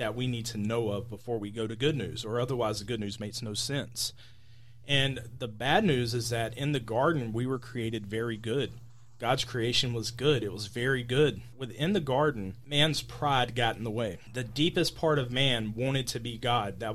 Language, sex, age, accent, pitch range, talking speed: English, male, 30-49, American, 120-140 Hz, 215 wpm